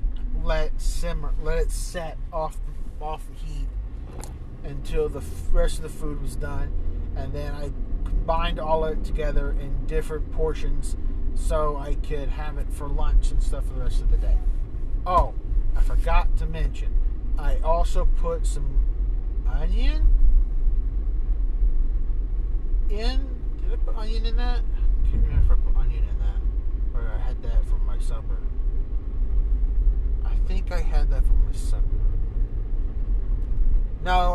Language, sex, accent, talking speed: English, male, American, 150 wpm